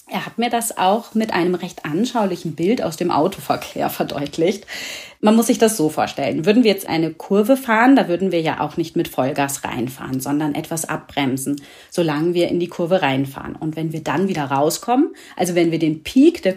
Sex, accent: female, German